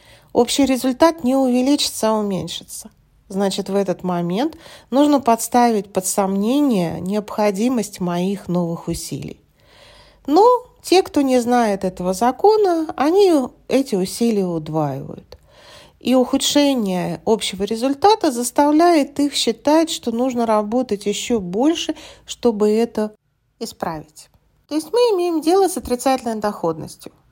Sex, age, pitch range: female, 40-59, 195-285 Hz